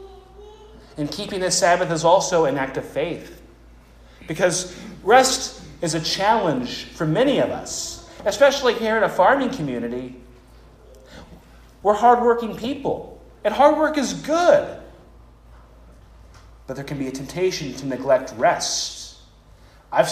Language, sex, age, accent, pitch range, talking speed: English, male, 30-49, American, 150-205 Hz, 130 wpm